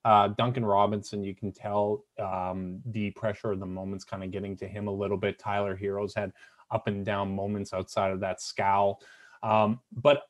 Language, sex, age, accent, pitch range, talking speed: English, male, 30-49, American, 100-120 Hz, 190 wpm